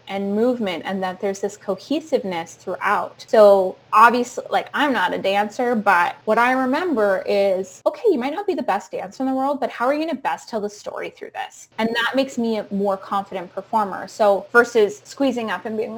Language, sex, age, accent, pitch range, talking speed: English, female, 10-29, American, 200-275 Hz, 210 wpm